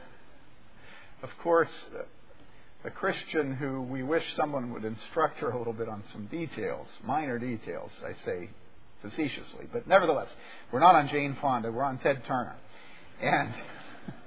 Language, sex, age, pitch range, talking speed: English, male, 50-69, 140-230 Hz, 145 wpm